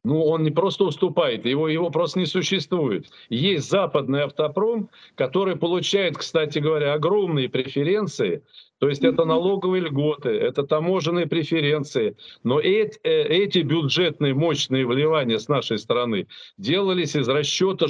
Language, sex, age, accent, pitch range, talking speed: Russian, male, 50-69, native, 145-185 Hz, 130 wpm